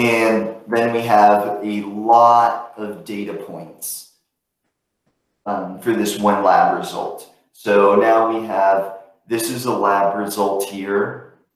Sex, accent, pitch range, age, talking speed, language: male, American, 100-115 Hz, 30-49, 130 wpm, English